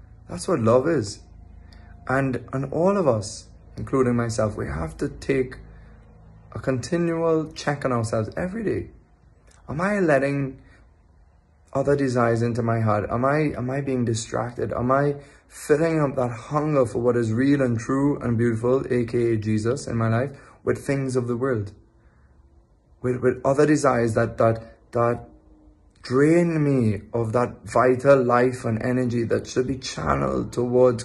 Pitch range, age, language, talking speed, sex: 105-130 Hz, 20-39, English, 155 wpm, male